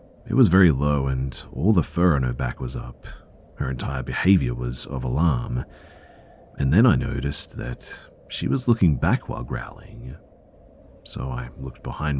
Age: 40-59